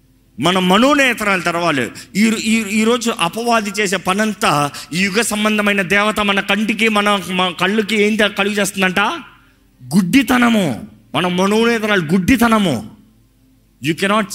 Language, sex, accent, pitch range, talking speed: Telugu, male, native, 140-220 Hz, 105 wpm